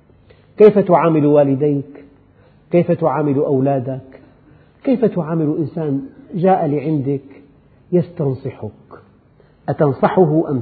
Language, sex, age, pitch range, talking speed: Arabic, male, 50-69, 130-185 Hz, 80 wpm